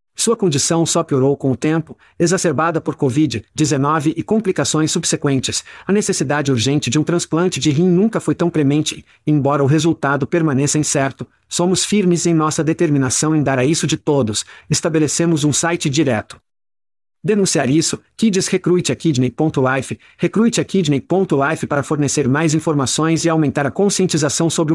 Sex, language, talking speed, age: male, Portuguese, 150 wpm, 50-69